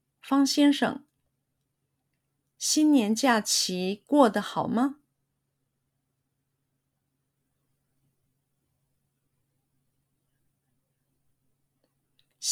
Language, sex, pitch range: Chinese, female, 135-220 Hz